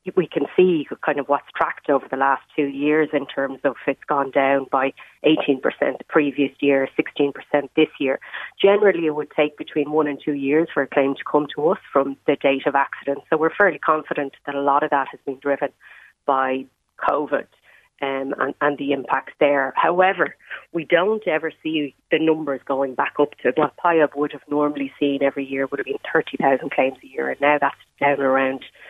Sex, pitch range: female, 140-160 Hz